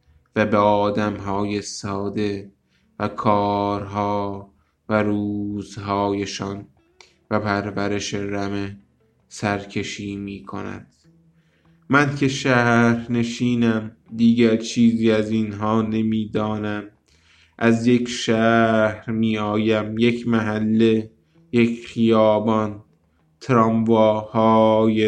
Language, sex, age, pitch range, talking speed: Persian, male, 20-39, 100-110 Hz, 75 wpm